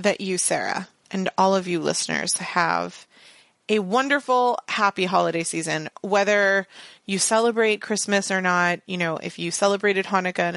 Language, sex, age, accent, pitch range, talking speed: English, female, 30-49, American, 175-205 Hz, 155 wpm